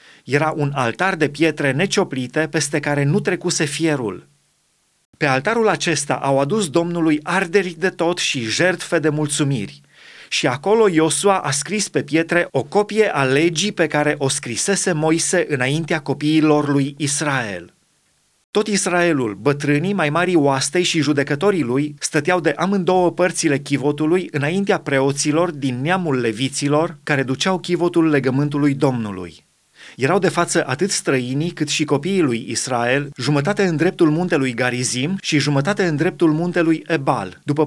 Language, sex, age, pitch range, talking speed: Romanian, male, 30-49, 140-175 Hz, 145 wpm